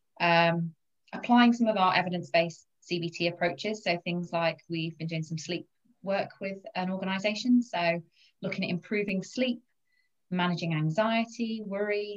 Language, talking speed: English, 140 wpm